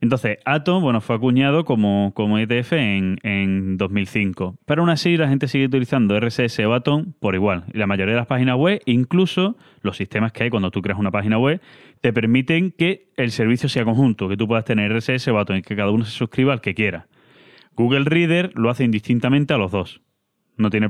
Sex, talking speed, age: male, 210 wpm, 20-39